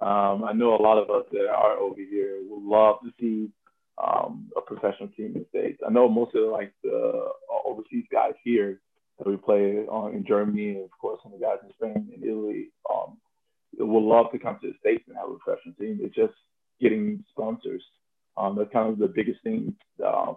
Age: 20-39